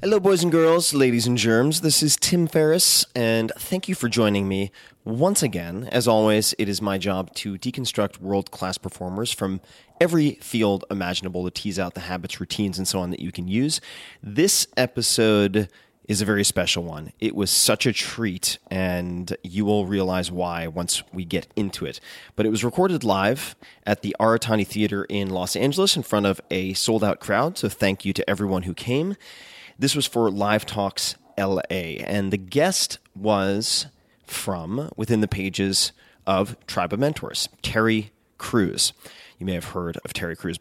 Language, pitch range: English, 95-120 Hz